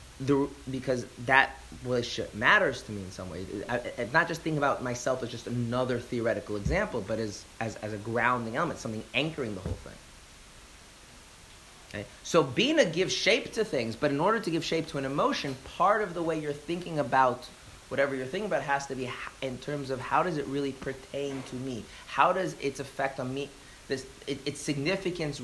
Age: 30-49